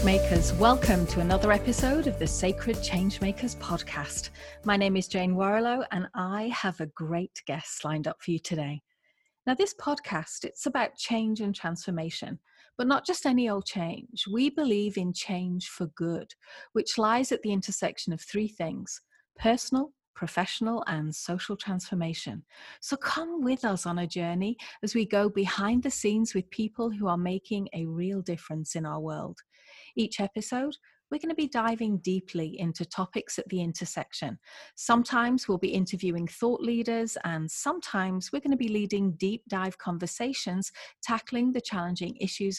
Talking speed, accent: 165 wpm, British